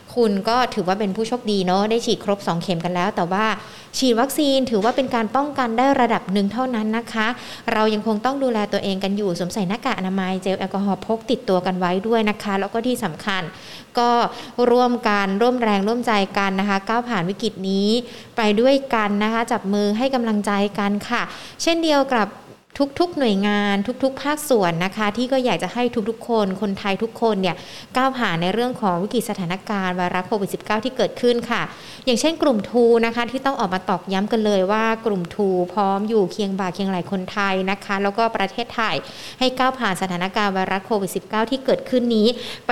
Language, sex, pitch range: Thai, female, 195-235 Hz